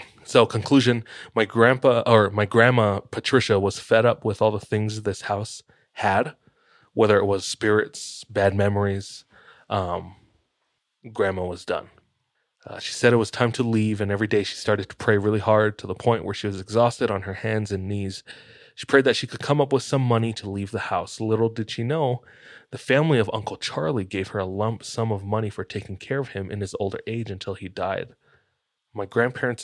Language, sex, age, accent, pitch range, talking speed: English, male, 20-39, American, 100-115 Hz, 205 wpm